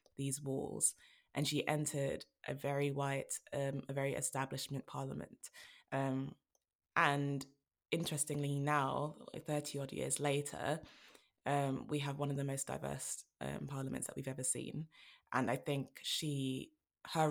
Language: English